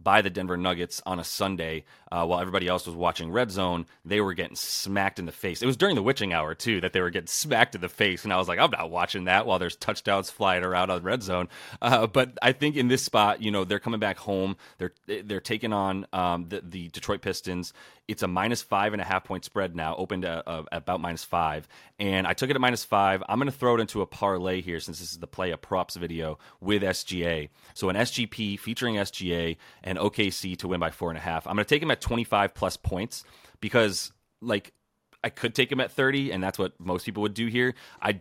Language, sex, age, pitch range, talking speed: English, male, 30-49, 90-110 Hz, 245 wpm